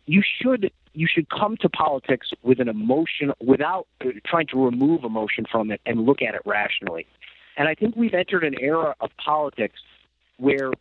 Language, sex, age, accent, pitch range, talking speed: English, male, 50-69, American, 125-170 Hz, 180 wpm